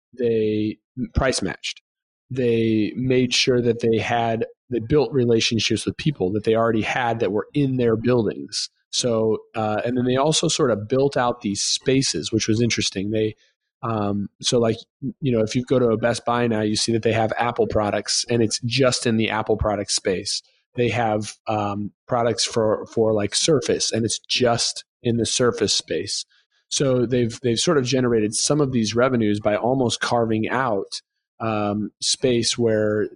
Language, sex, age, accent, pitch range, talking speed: English, male, 30-49, American, 110-125 Hz, 180 wpm